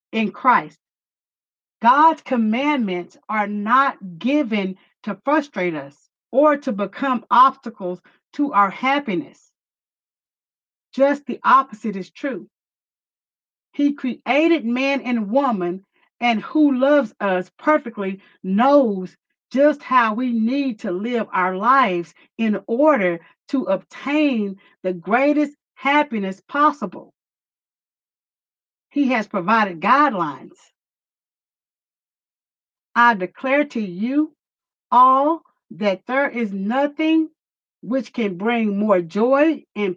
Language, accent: English, American